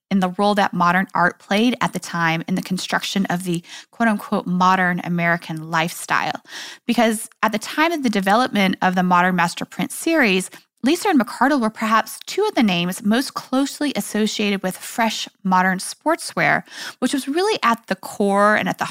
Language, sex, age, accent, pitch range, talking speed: English, female, 20-39, American, 180-250 Hz, 185 wpm